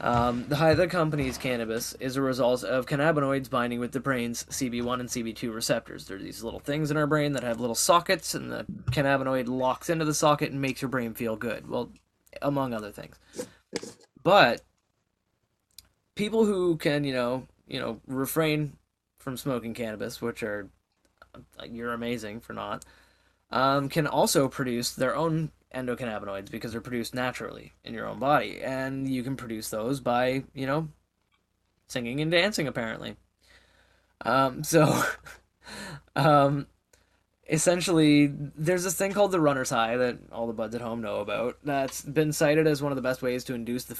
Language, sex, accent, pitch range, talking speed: English, male, American, 120-150 Hz, 170 wpm